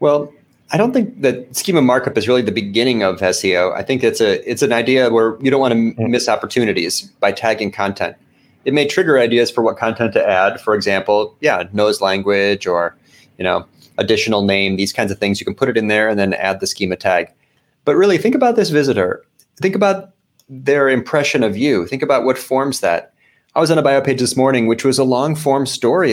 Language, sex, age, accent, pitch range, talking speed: English, male, 30-49, American, 105-145 Hz, 220 wpm